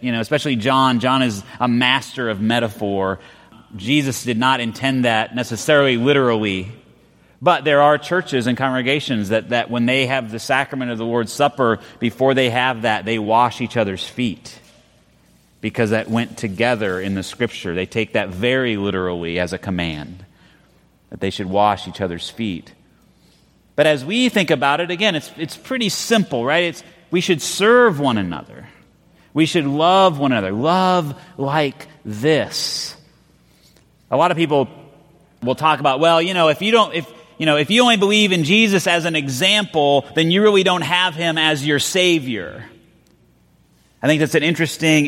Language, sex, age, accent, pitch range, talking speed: English, male, 30-49, American, 115-155 Hz, 175 wpm